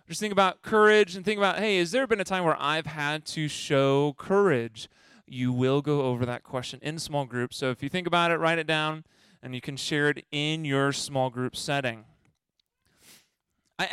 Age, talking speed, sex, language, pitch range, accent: 20-39, 205 wpm, male, English, 135-175 Hz, American